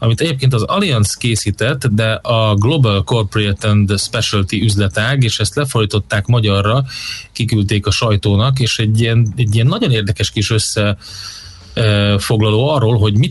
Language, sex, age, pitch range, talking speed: Hungarian, male, 30-49, 100-125 Hz, 140 wpm